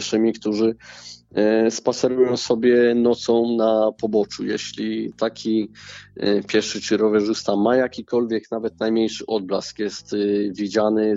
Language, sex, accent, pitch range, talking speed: Polish, male, native, 105-115 Hz, 95 wpm